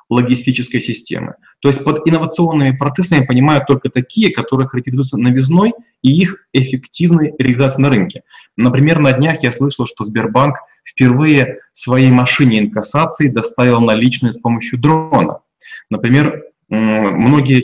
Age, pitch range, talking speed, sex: 30-49, 120-145 Hz, 125 wpm, male